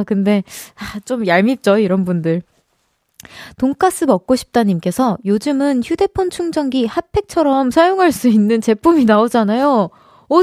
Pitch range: 210-310 Hz